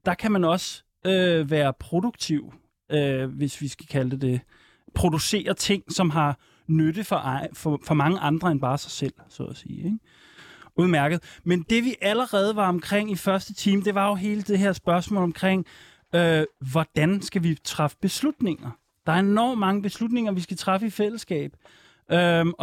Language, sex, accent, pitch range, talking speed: Danish, male, native, 155-195 Hz, 180 wpm